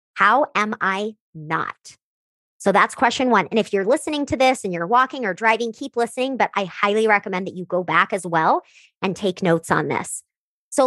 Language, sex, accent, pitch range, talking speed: English, male, American, 185-255 Hz, 205 wpm